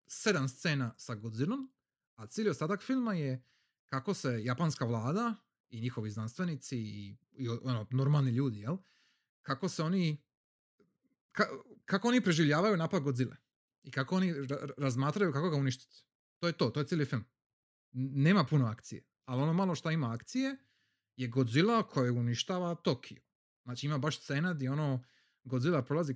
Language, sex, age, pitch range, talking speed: Croatian, male, 30-49, 120-170 Hz, 160 wpm